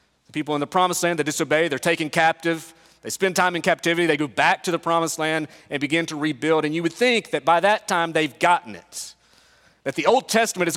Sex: male